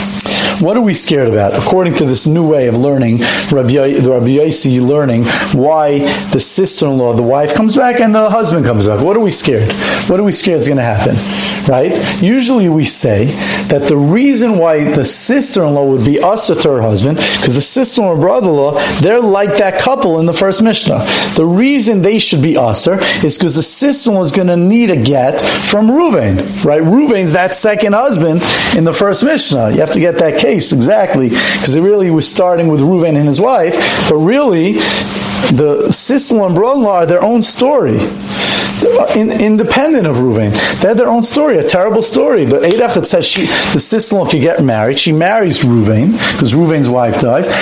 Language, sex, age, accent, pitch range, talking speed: English, male, 40-59, American, 145-220 Hz, 190 wpm